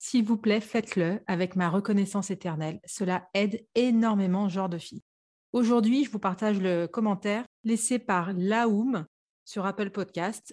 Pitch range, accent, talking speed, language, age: 180-220 Hz, French, 150 wpm, French, 30-49